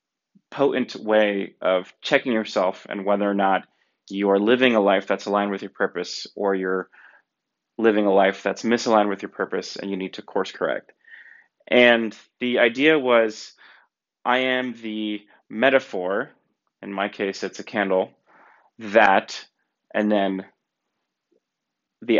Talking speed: 145 wpm